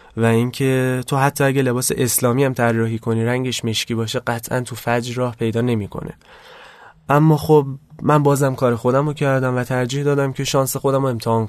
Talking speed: 185 wpm